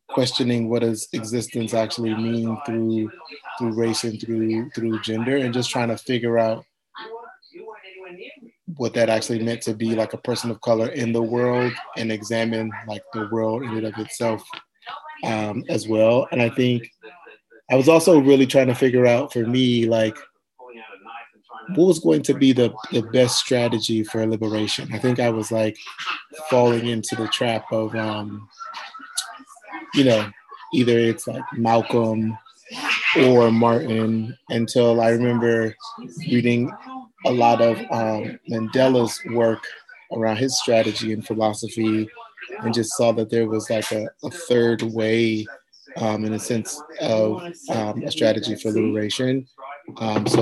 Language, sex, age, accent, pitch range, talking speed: English, male, 20-39, American, 110-130 Hz, 150 wpm